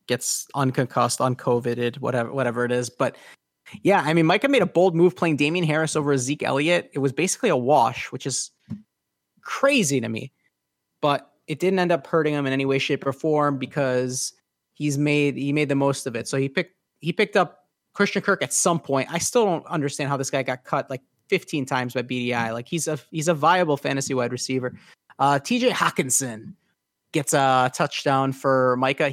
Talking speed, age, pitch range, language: 200 wpm, 30-49, 130-160 Hz, English